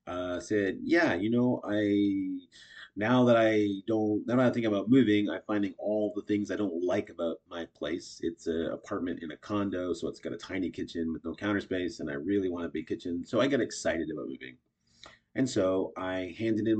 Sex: male